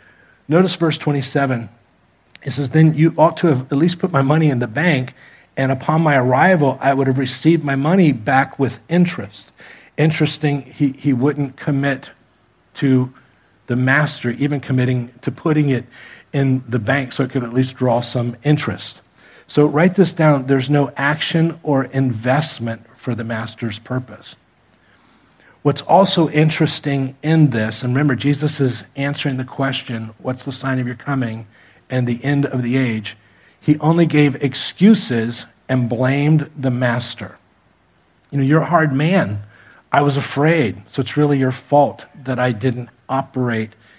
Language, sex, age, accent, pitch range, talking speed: English, male, 50-69, American, 125-150 Hz, 160 wpm